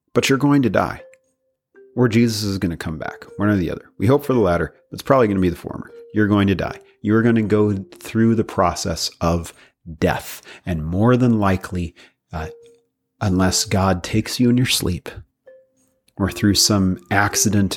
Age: 40-59